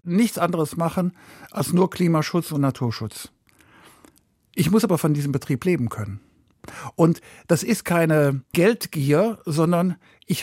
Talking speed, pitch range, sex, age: 130 wpm, 145-190 Hz, male, 60-79